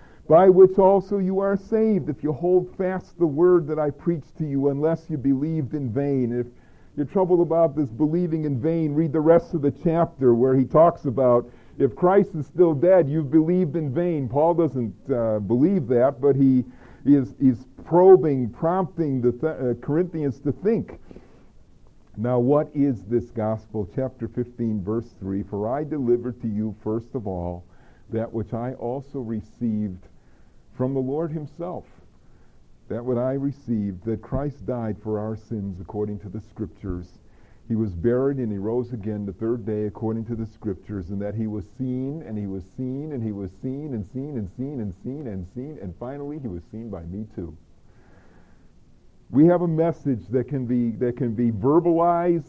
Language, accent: English, American